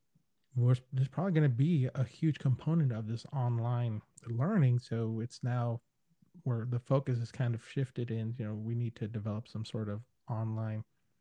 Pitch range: 115-140 Hz